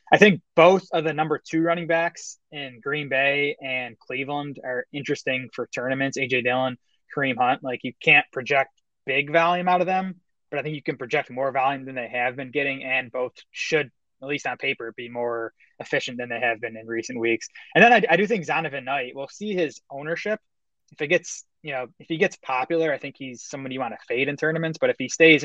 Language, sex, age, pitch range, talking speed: English, male, 20-39, 125-155 Hz, 225 wpm